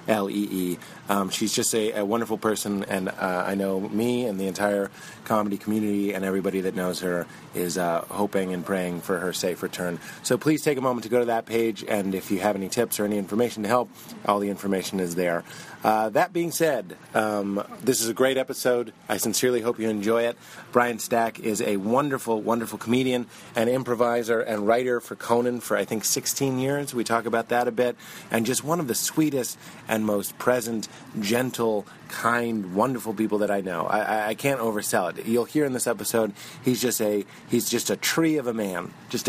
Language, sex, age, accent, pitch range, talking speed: English, male, 30-49, American, 100-130 Hz, 205 wpm